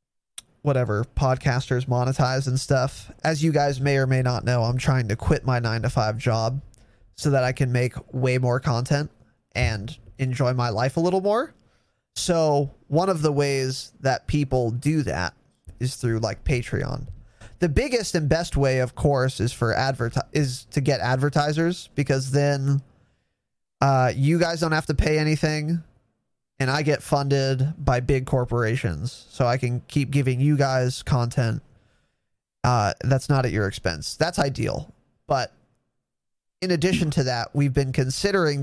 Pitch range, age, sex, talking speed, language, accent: 125-145 Hz, 20-39, male, 160 wpm, English, American